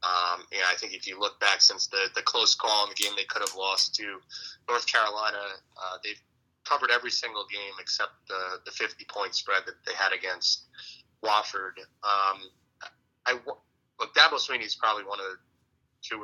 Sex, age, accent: male, 30-49, American